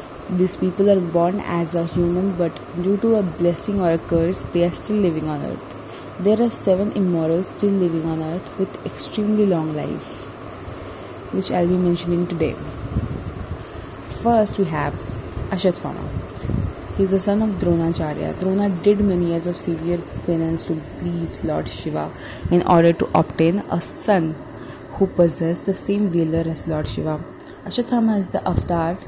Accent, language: Indian, English